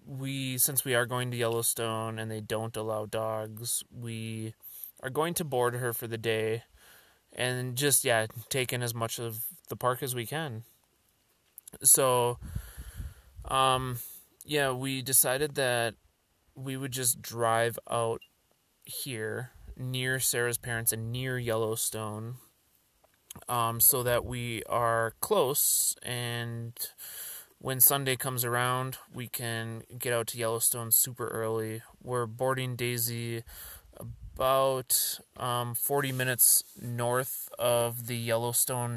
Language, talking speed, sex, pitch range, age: English, 125 wpm, male, 115-125 Hz, 20-39